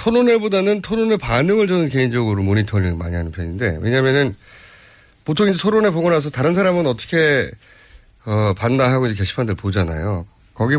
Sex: male